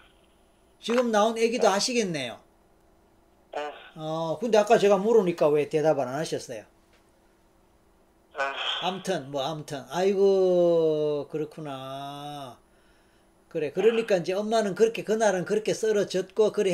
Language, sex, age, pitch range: Korean, male, 40-59, 165-215 Hz